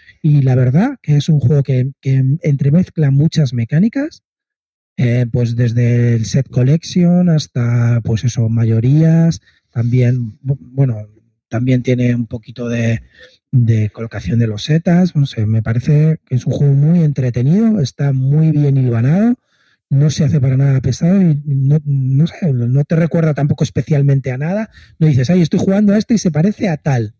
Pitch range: 125-160 Hz